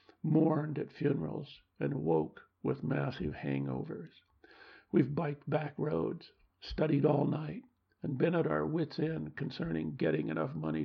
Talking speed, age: 140 wpm, 60-79